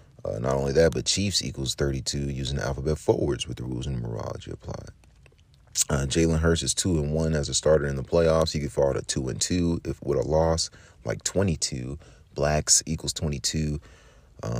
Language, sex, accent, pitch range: English, male, American, 65-80 Hz